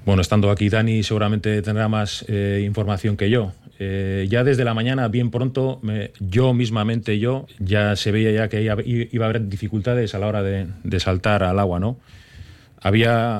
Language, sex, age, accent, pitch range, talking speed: Spanish, male, 30-49, Spanish, 105-120 Hz, 185 wpm